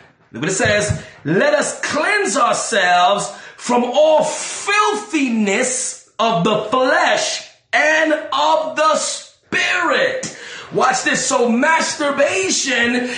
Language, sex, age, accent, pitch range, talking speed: English, male, 40-59, American, 240-320 Hz, 95 wpm